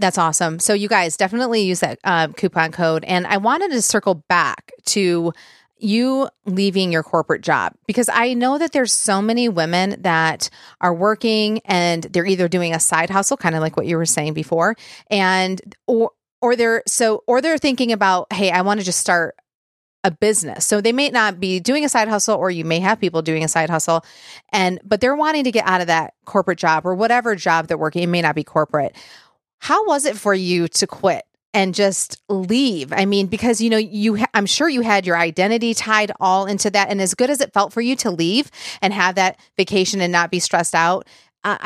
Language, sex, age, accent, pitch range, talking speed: English, female, 30-49, American, 170-220 Hz, 220 wpm